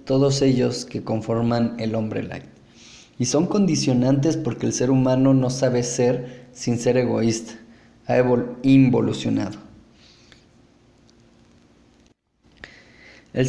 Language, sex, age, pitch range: Spanish, male, 20-39, 115-135 Hz